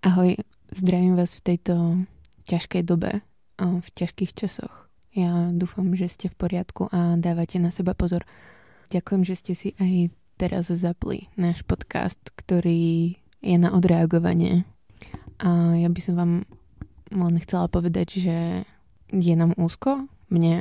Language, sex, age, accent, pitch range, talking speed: Czech, female, 20-39, native, 175-185 Hz, 140 wpm